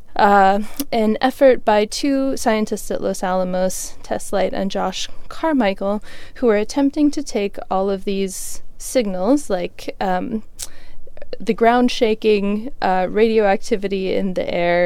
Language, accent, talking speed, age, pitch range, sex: English, American, 135 wpm, 20-39, 185-225 Hz, female